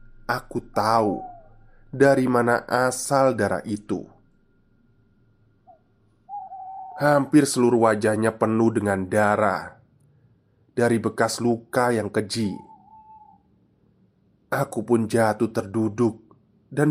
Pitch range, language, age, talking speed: 110-140 Hz, Indonesian, 20-39, 80 wpm